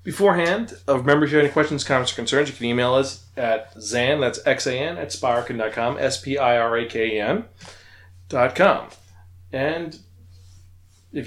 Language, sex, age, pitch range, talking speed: English, male, 30-49, 95-140 Hz, 135 wpm